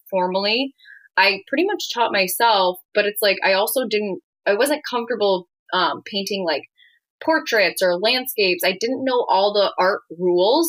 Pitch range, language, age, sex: 195-275 Hz, English, 20-39, female